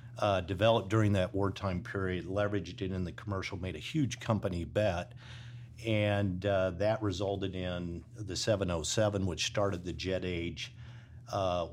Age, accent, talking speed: 50-69, American, 150 wpm